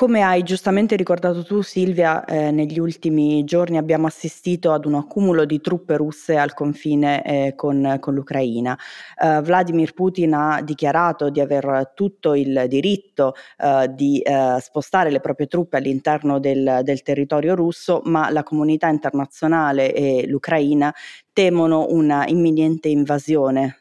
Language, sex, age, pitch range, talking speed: Italian, female, 20-39, 135-160 Hz, 140 wpm